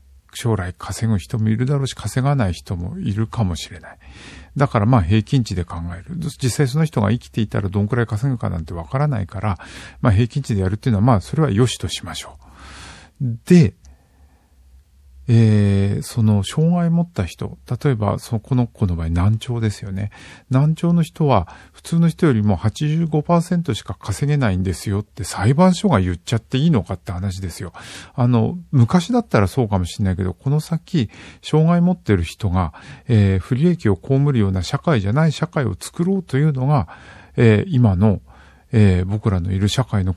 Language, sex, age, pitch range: Japanese, male, 50-69, 95-135 Hz